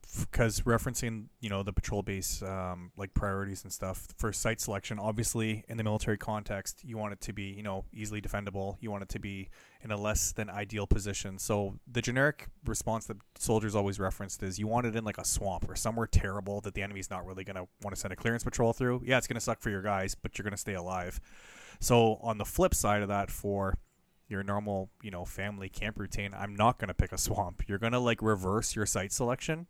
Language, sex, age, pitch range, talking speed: English, male, 20-39, 95-110 Hz, 230 wpm